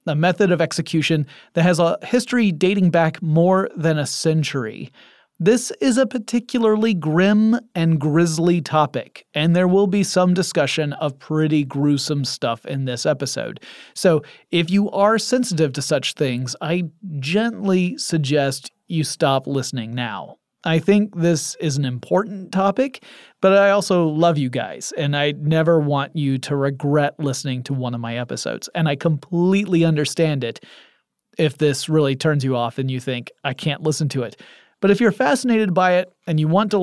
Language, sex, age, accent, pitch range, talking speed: English, male, 30-49, American, 140-185 Hz, 170 wpm